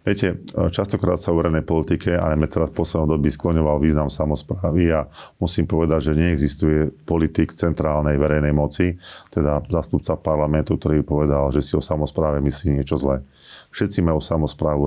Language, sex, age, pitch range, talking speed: Slovak, male, 40-59, 75-85 Hz, 160 wpm